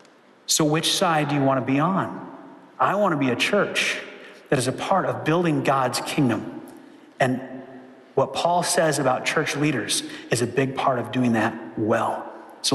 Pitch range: 135-170 Hz